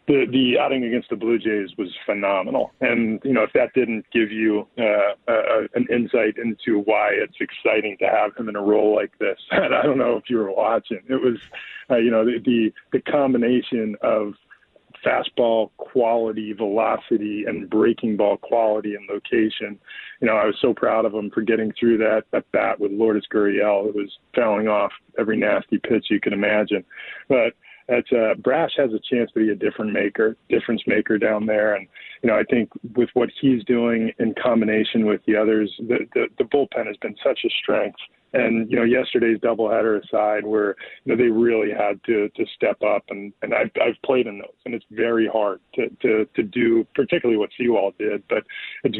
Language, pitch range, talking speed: English, 105-120 Hz, 200 wpm